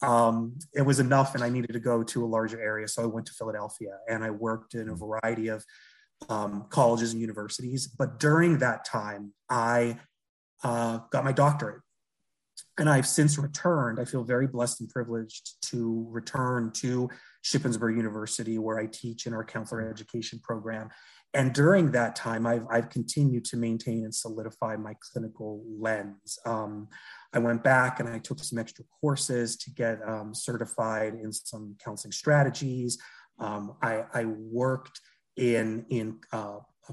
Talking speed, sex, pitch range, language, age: 160 wpm, male, 115-135 Hz, English, 30-49